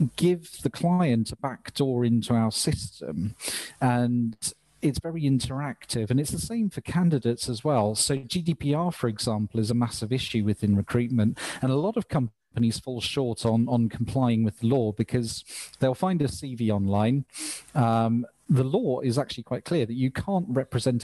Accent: British